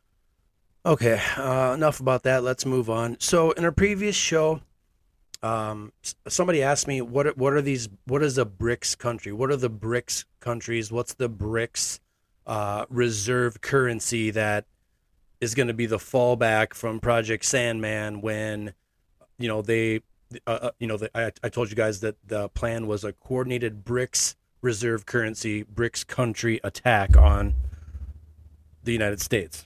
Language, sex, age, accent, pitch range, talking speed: English, male, 30-49, American, 105-130 Hz, 160 wpm